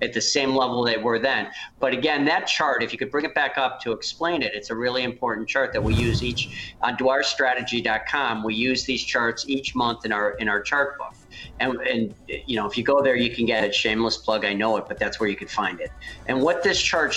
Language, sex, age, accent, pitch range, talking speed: English, male, 50-69, American, 115-145 Hz, 250 wpm